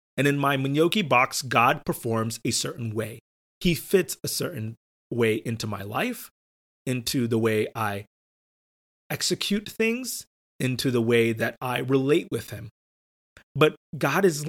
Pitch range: 120-175 Hz